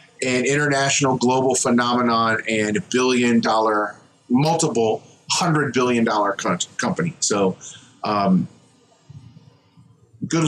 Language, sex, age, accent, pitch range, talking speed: English, male, 40-59, American, 115-145 Hz, 90 wpm